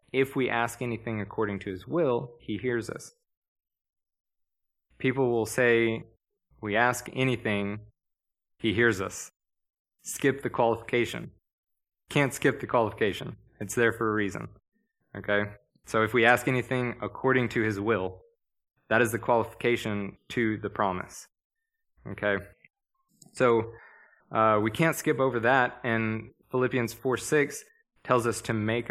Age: 20-39